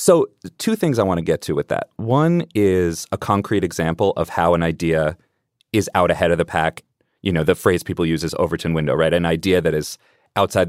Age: 30-49